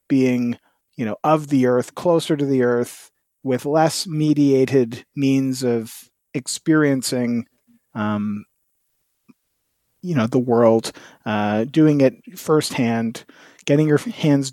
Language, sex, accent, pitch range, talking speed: English, male, American, 125-155 Hz, 115 wpm